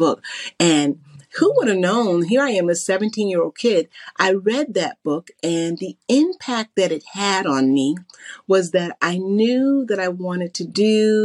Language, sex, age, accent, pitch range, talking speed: English, female, 40-59, American, 160-215 Hz, 175 wpm